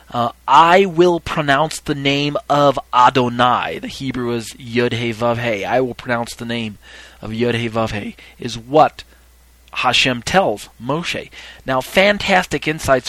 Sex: male